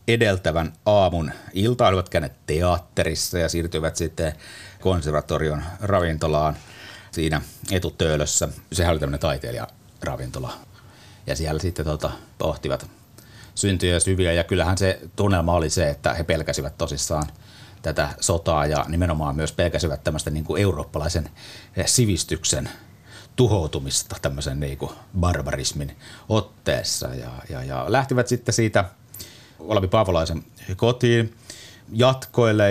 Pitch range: 80-105 Hz